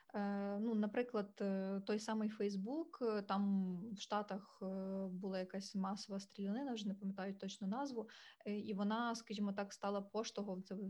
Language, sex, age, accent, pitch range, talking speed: Ukrainian, female, 20-39, native, 195-220 Hz, 140 wpm